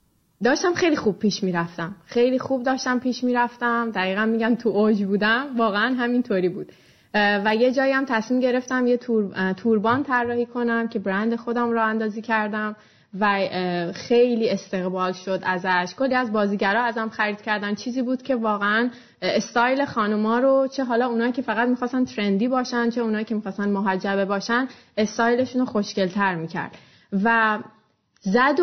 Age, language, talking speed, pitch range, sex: 20-39, Persian, 155 wpm, 205-250 Hz, female